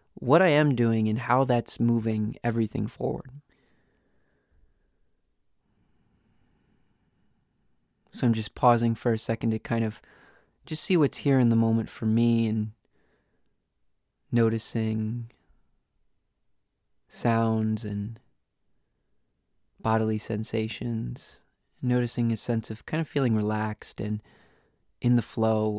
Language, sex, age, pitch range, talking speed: English, male, 20-39, 110-130 Hz, 110 wpm